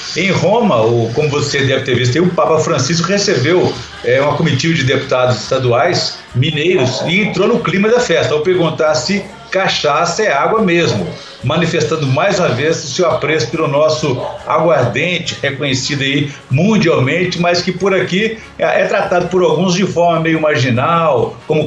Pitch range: 130-175 Hz